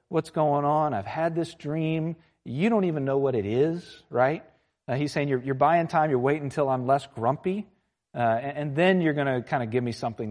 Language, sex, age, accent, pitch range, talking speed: English, male, 40-59, American, 115-150 Hz, 235 wpm